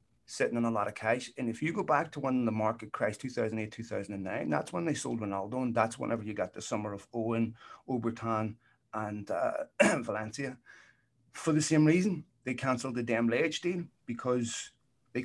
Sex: male